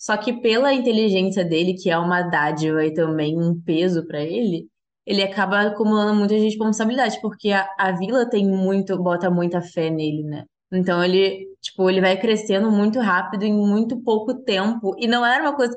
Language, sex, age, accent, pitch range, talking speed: Portuguese, female, 20-39, Brazilian, 175-215 Hz, 185 wpm